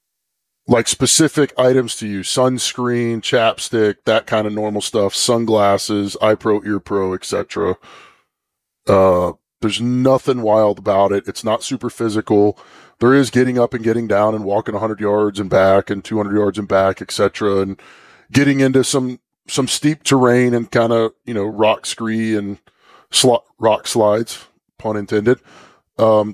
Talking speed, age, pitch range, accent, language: 155 wpm, 20-39, 105-130 Hz, American, English